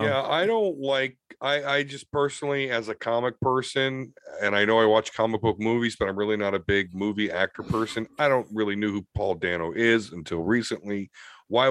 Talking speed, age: 205 wpm, 40-59